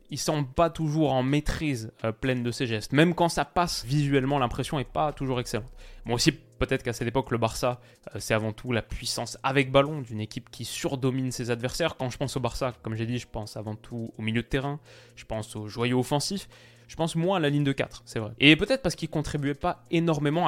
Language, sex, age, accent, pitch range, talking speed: French, male, 20-39, French, 120-150 Hz, 245 wpm